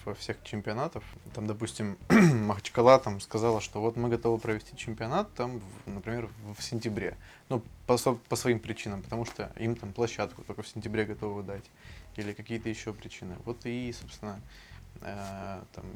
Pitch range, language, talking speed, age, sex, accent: 105-115 Hz, Russian, 160 wpm, 20-39, male, native